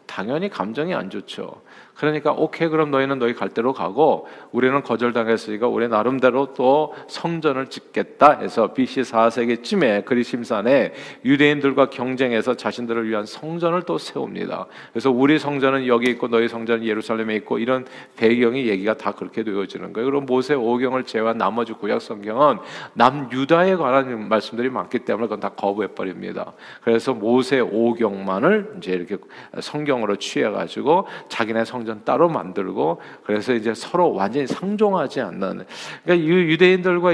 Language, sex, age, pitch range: Korean, male, 40-59, 115-155 Hz